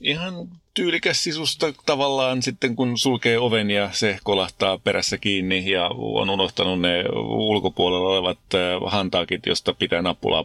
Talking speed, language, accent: 130 wpm, Finnish, native